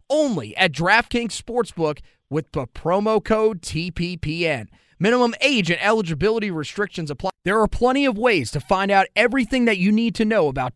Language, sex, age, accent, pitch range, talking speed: English, male, 30-49, American, 155-220 Hz, 165 wpm